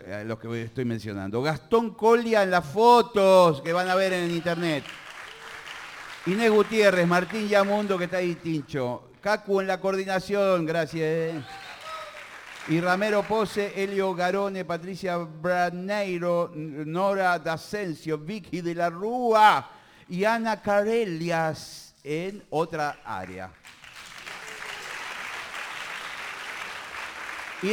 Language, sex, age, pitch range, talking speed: Spanish, male, 50-69, 165-220 Hz, 105 wpm